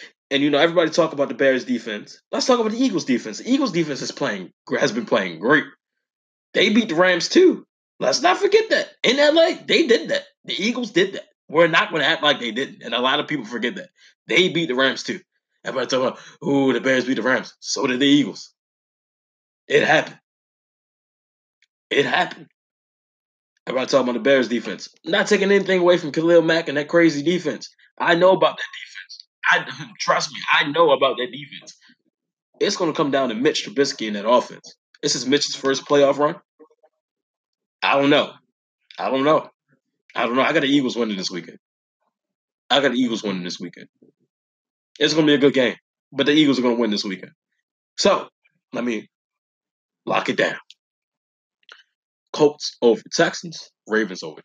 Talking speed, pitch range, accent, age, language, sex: 195 wpm, 135-200 Hz, American, 20-39, English, male